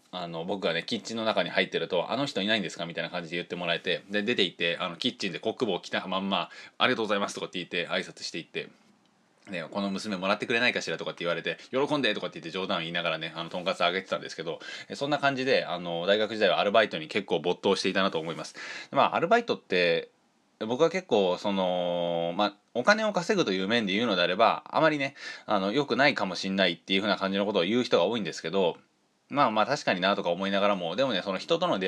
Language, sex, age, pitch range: Japanese, male, 20-39, 95-125 Hz